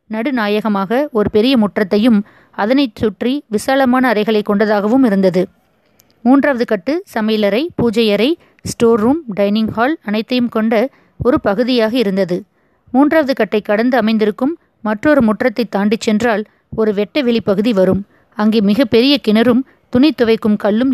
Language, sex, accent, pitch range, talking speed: Tamil, female, native, 210-255 Hz, 120 wpm